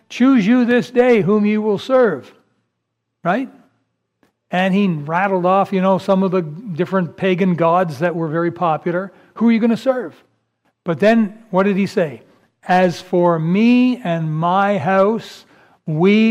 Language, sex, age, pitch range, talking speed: English, male, 60-79, 170-210 Hz, 160 wpm